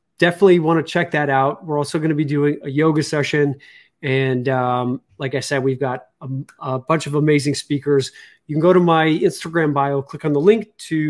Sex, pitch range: male, 140-170 Hz